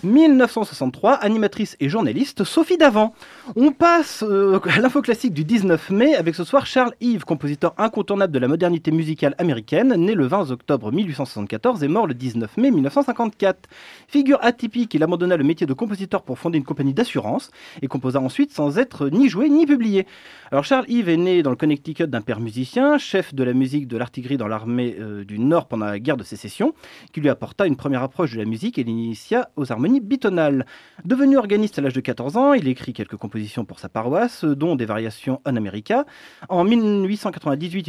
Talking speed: 190 wpm